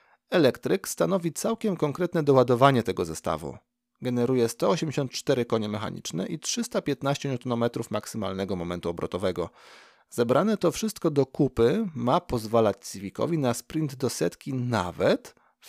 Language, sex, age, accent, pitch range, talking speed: Polish, male, 40-59, native, 115-175 Hz, 120 wpm